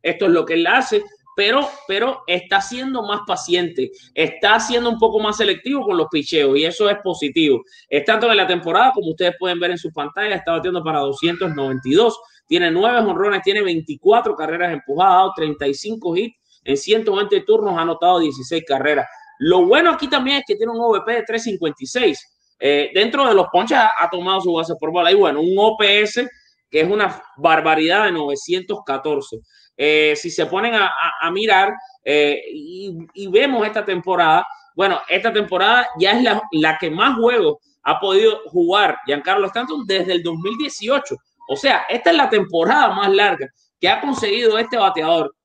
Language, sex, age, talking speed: English, male, 20-39, 180 wpm